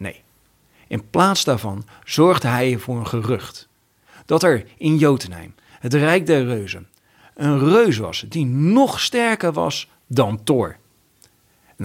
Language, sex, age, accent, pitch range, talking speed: Dutch, male, 40-59, Dutch, 110-140 Hz, 130 wpm